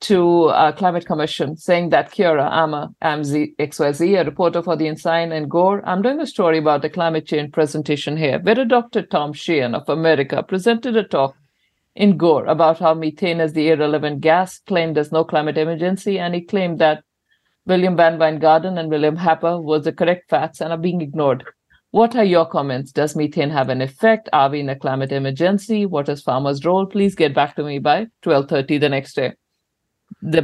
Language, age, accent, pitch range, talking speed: English, 50-69, Indian, 155-185 Hz, 200 wpm